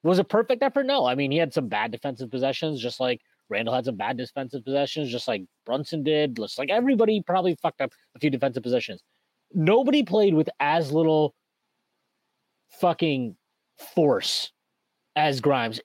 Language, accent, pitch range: English, American, 140-195 Hz